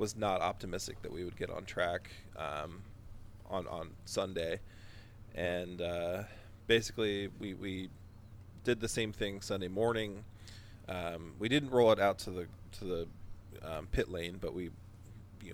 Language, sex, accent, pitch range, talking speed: English, male, American, 95-105 Hz, 155 wpm